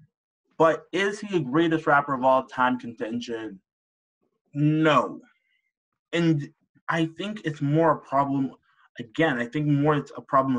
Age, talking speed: 20-39, 140 wpm